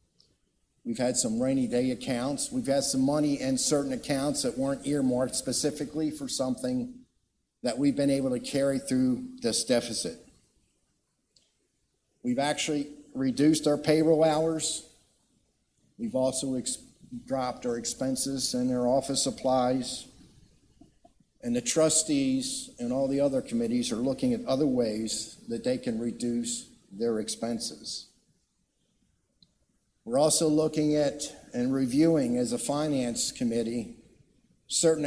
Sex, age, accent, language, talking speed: male, 50-69, American, English, 125 wpm